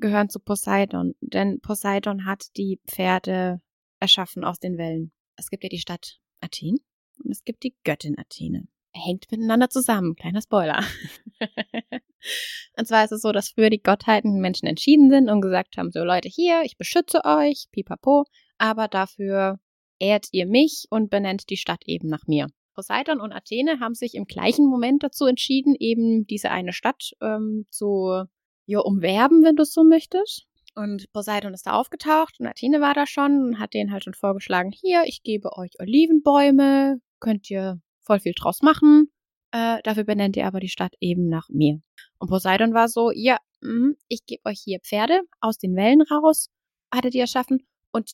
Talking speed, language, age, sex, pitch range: 175 wpm, German, 20-39, female, 190-270 Hz